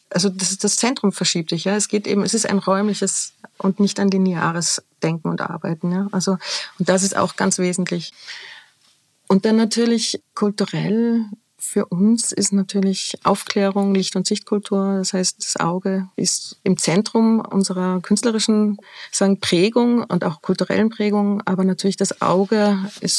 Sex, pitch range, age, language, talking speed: female, 185-205 Hz, 30-49, English, 160 wpm